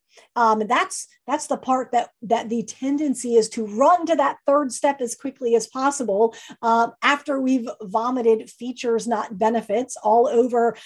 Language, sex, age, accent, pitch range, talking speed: English, female, 50-69, American, 225-300 Hz, 160 wpm